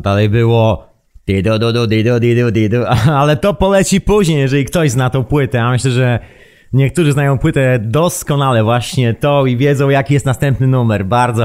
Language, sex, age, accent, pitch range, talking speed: Polish, male, 30-49, native, 115-150 Hz, 170 wpm